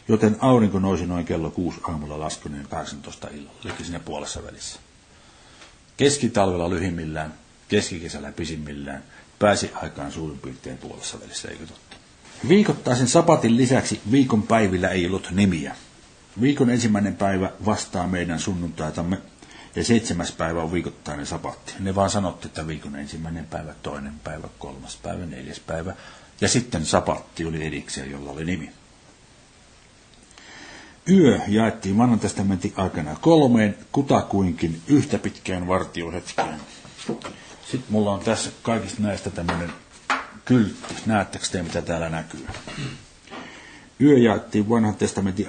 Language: Finnish